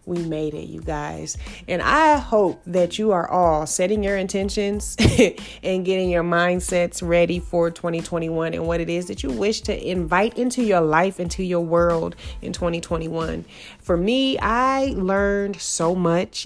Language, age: English, 30-49